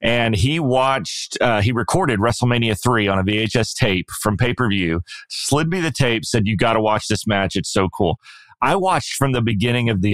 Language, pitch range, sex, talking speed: English, 105-130 Hz, male, 215 wpm